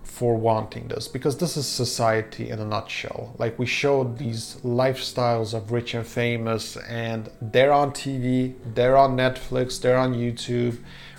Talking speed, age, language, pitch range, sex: 155 wpm, 30-49, English, 115-130 Hz, male